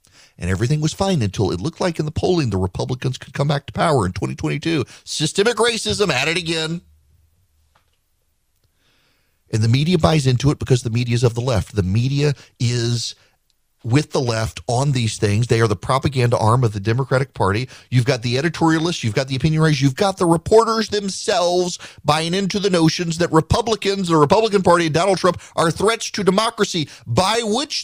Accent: American